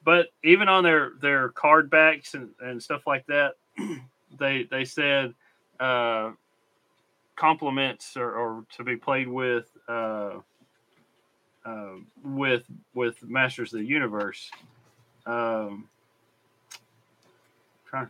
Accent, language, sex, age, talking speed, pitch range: American, English, male, 30-49, 110 wpm, 120-150 Hz